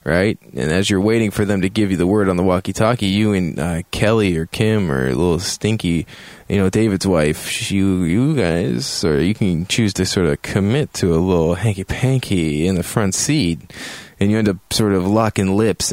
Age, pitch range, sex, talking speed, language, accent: 20-39, 85-110 Hz, male, 210 wpm, English, American